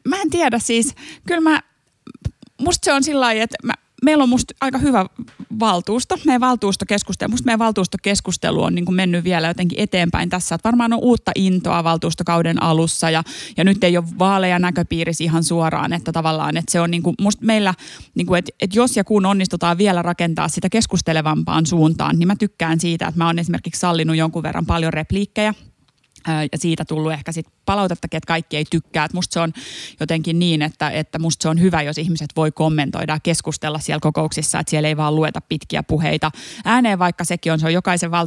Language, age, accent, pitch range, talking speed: Finnish, 30-49, native, 160-200 Hz, 195 wpm